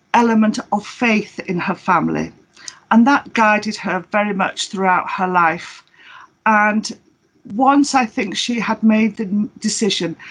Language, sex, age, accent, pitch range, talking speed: English, female, 50-69, British, 190-240 Hz, 140 wpm